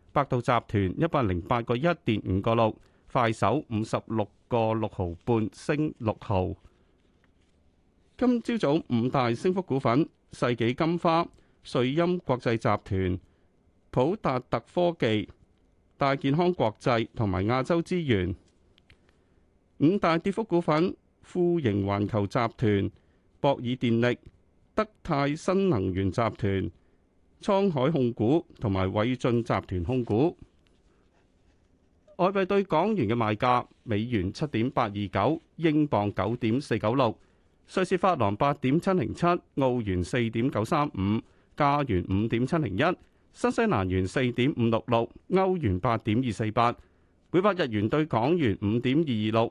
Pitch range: 95-145 Hz